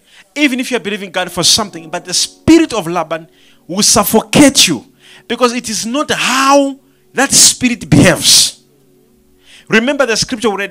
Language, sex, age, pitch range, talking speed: English, male, 40-59, 200-280 Hz, 165 wpm